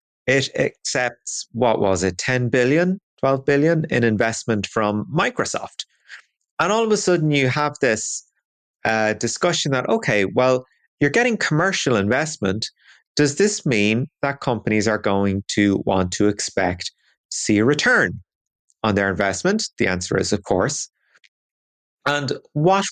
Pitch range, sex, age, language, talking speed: 105-160 Hz, male, 30-49, English, 140 wpm